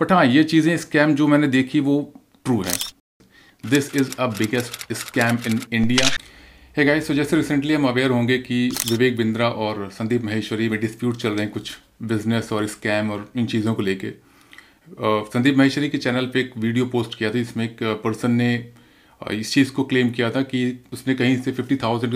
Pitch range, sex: 115-135 Hz, male